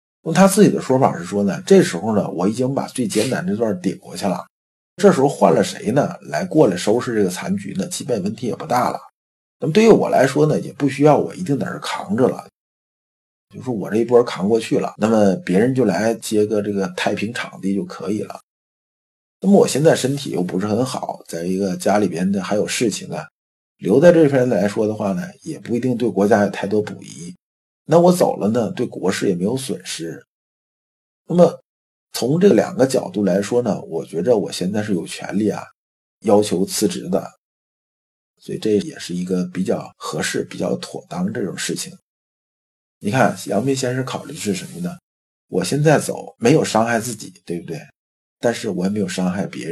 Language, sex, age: Chinese, male, 50-69